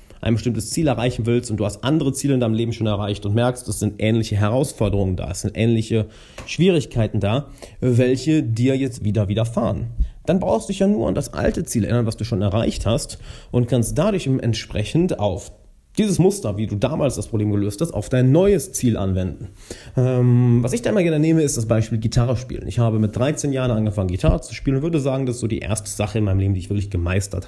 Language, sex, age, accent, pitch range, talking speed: German, male, 30-49, German, 105-135 Hz, 225 wpm